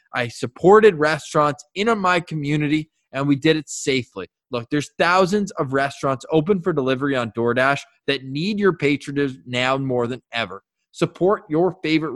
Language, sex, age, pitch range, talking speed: English, male, 20-39, 130-190 Hz, 160 wpm